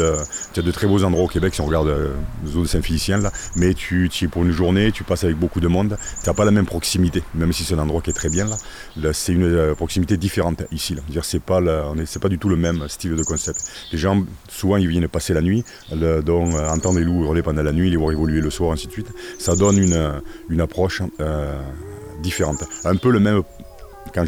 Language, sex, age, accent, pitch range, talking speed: French, male, 40-59, French, 80-95 Hz, 245 wpm